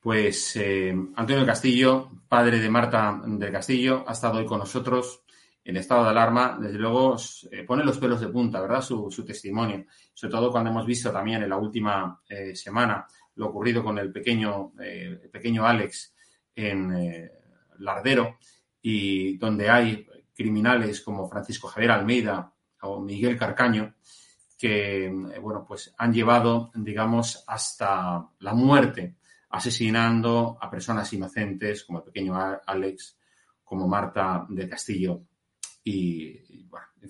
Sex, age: male, 30-49